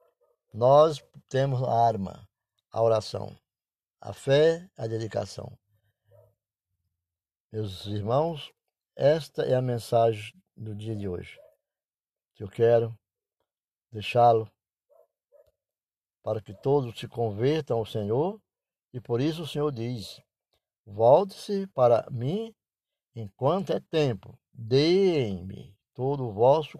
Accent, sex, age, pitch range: Brazilian, male, 60-79, 110-140 Hz